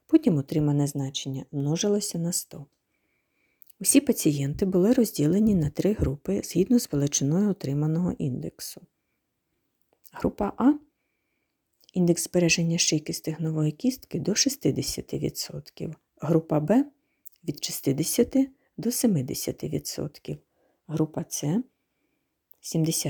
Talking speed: 100 wpm